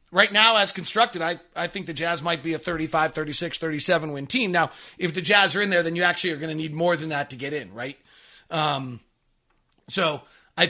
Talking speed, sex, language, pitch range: 230 wpm, male, English, 165-215 Hz